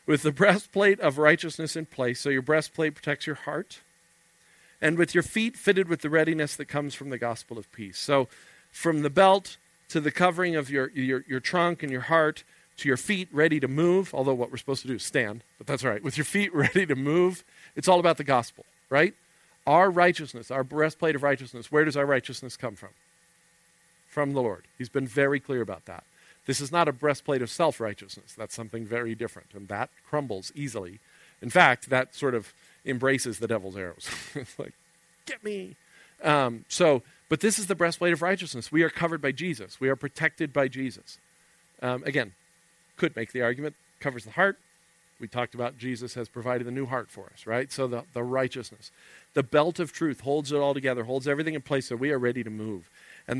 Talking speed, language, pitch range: 210 wpm, English, 120-155 Hz